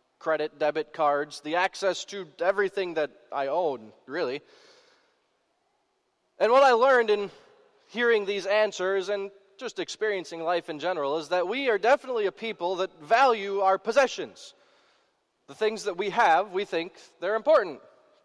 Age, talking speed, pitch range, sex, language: 20-39, 150 wpm, 175-270 Hz, male, English